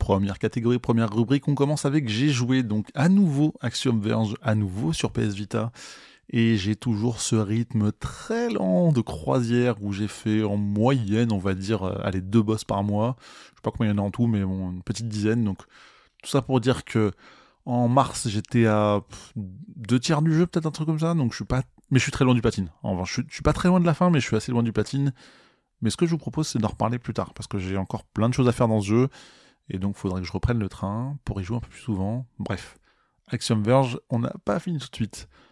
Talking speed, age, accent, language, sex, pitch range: 255 wpm, 20-39, French, French, male, 105-130 Hz